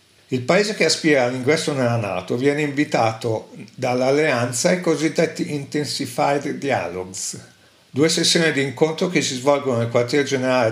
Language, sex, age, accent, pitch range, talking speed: Italian, male, 50-69, native, 120-155 Hz, 135 wpm